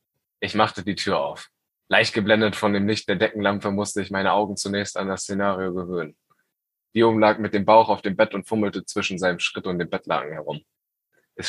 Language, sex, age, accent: German, male, 10-29, German